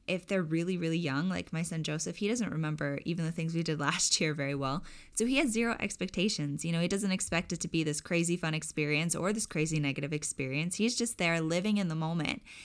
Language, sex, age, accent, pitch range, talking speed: English, female, 10-29, American, 150-185 Hz, 235 wpm